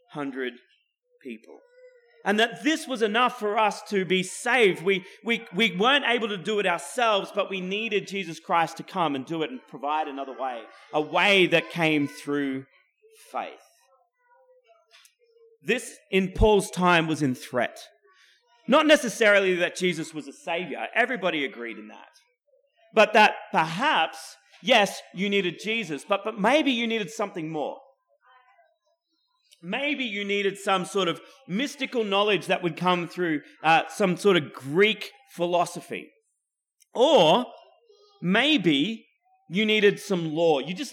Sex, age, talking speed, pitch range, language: male, 30-49, 145 wpm, 180-255 Hz, English